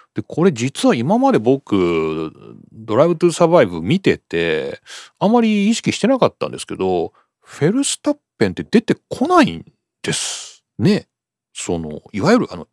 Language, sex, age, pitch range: Japanese, male, 40-59, 115-190 Hz